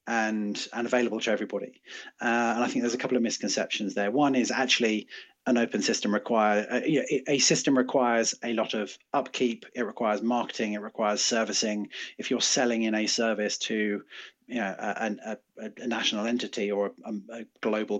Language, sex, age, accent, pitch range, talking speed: English, male, 30-49, British, 105-120 Hz, 185 wpm